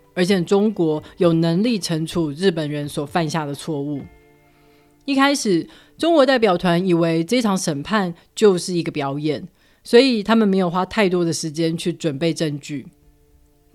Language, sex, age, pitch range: Chinese, female, 30-49, 160-200 Hz